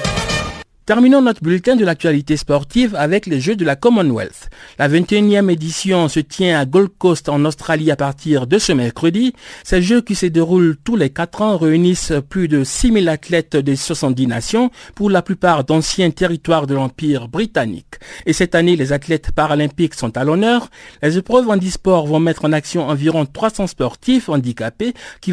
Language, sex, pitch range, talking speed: French, male, 145-195 Hz, 175 wpm